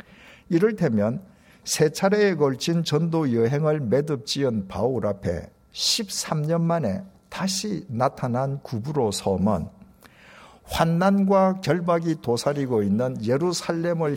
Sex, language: male, Korean